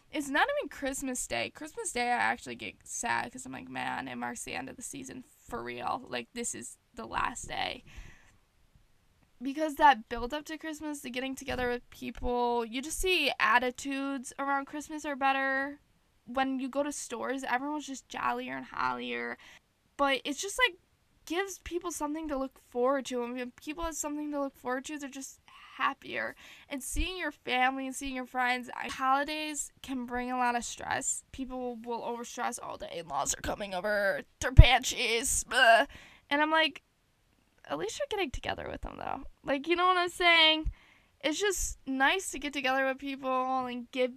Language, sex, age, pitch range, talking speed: English, female, 10-29, 240-290 Hz, 185 wpm